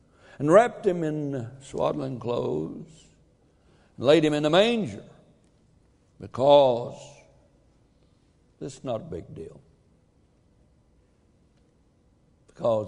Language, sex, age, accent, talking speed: English, male, 60-79, American, 95 wpm